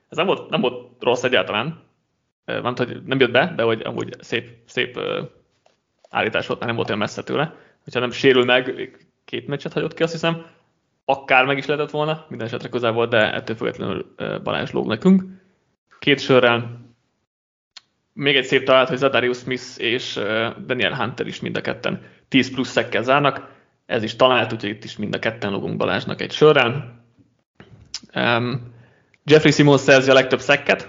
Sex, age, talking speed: male, 30-49, 170 wpm